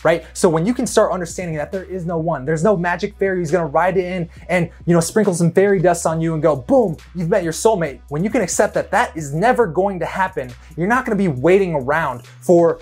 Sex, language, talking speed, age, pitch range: male, English, 260 wpm, 20-39, 150-205 Hz